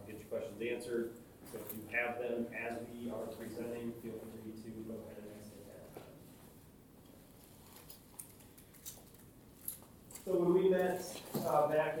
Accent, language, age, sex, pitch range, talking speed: American, English, 30-49, male, 110-140 Hz, 120 wpm